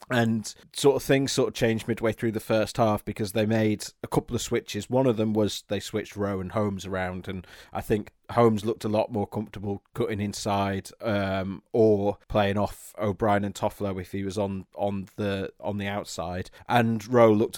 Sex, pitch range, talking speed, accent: male, 100-115 Hz, 200 wpm, British